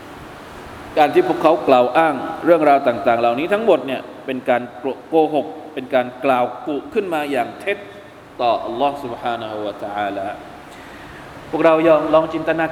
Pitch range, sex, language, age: 155-240 Hz, male, Thai, 20-39